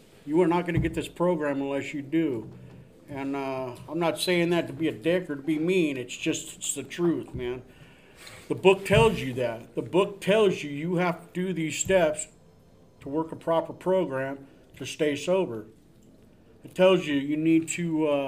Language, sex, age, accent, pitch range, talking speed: English, male, 50-69, American, 140-170 Hz, 200 wpm